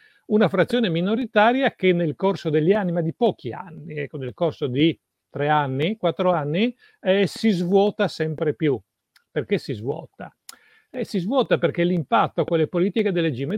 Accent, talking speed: native, 165 wpm